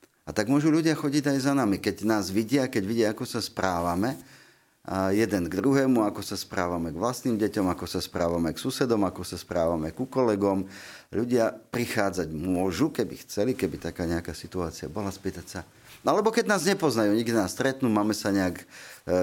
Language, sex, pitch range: Slovak, male, 95-135 Hz